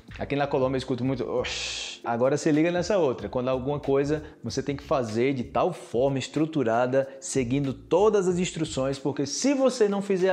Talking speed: 180 wpm